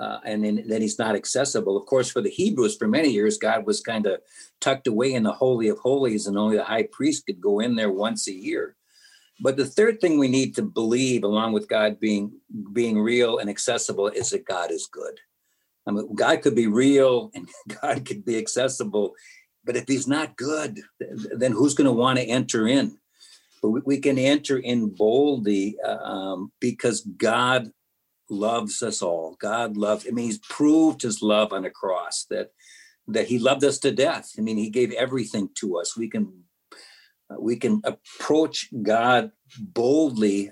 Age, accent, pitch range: 60-79, American, 105-145 Hz